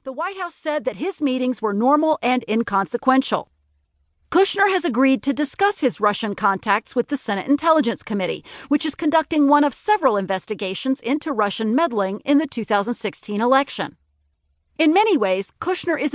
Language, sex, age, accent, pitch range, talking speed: English, female, 40-59, American, 215-310 Hz, 160 wpm